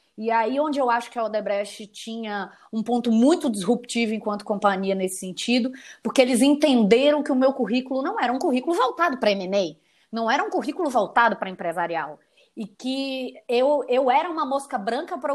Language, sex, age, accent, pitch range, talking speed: Portuguese, female, 20-39, Brazilian, 210-300 Hz, 185 wpm